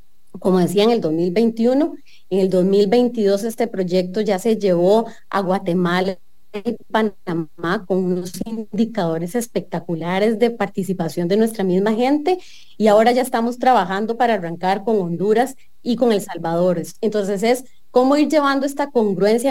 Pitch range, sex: 185-245 Hz, female